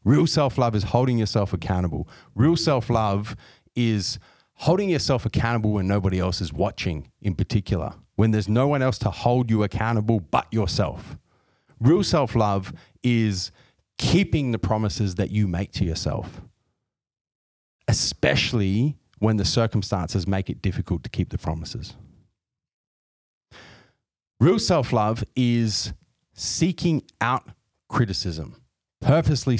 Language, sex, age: English, male, 30-49